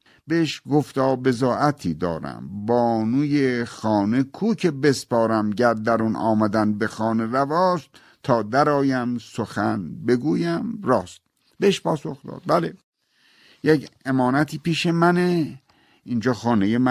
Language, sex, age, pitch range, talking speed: Persian, male, 50-69, 110-150 Hz, 110 wpm